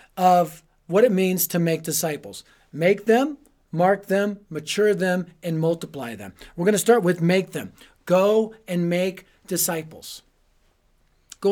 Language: English